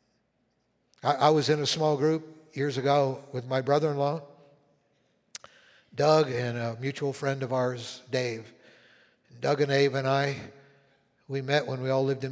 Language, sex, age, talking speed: English, male, 60-79, 150 wpm